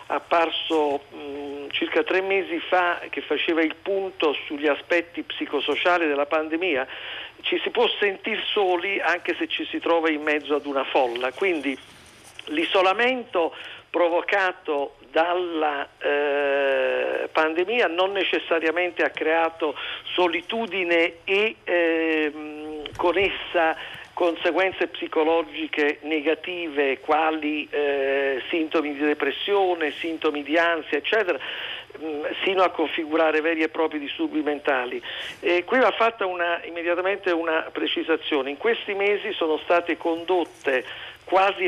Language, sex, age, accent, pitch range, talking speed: Italian, male, 50-69, native, 155-190 Hz, 110 wpm